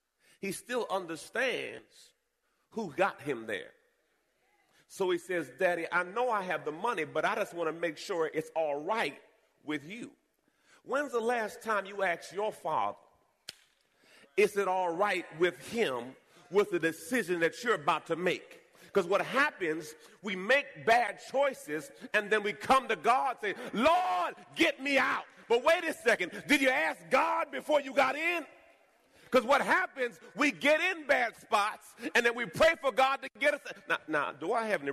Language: English